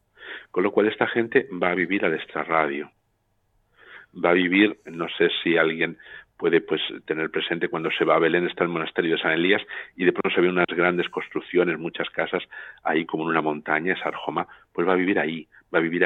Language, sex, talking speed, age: Spanish, male, 210 wpm, 50-69